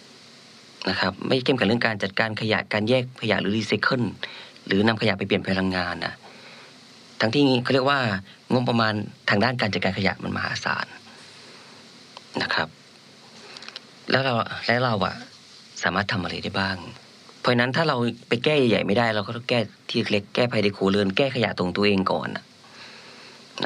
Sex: female